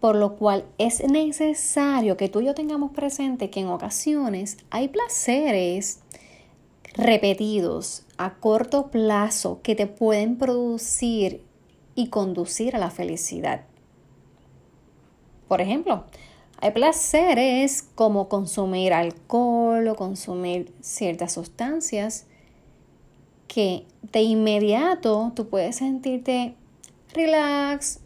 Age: 30-49